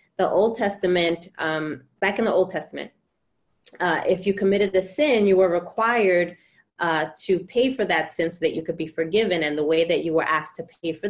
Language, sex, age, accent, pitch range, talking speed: English, female, 30-49, American, 155-185 Hz, 215 wpm